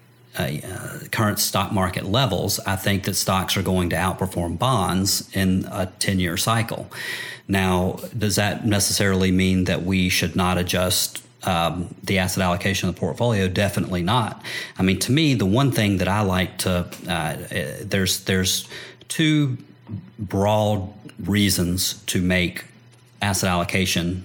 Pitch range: 90-105 Hz